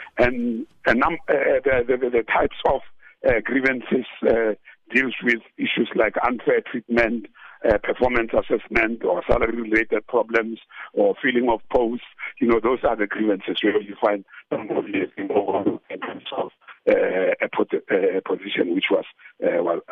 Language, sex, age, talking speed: English, male, 60-79, 135 wpm